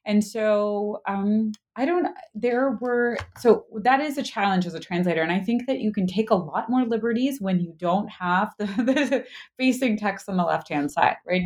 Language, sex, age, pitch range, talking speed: English, female, 30-49, 165-215 Hz, 205 wpm